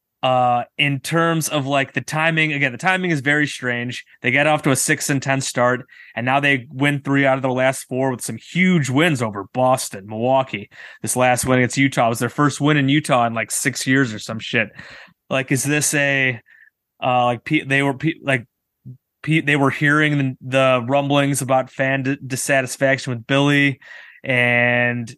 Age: 20-39